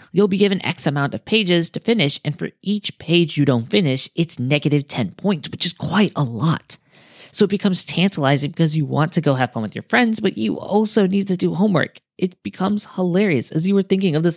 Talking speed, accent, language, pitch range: 230 wpm, American, English, 130-180 Hz